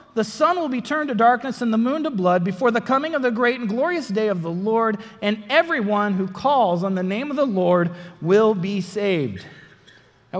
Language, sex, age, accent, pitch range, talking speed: English, male, 40-59, American, 175-245 Hz, 220 wpm